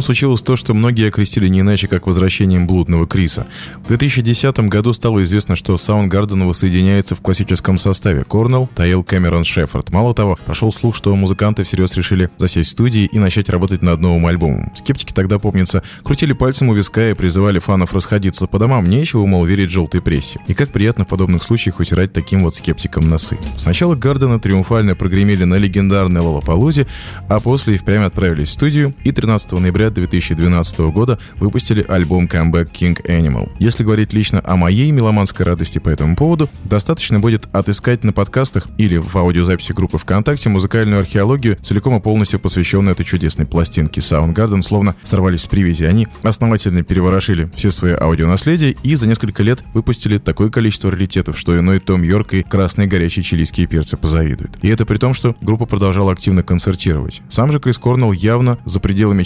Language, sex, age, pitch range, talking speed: Russian, male, 20-39, 90-110 Hz, 170 wpm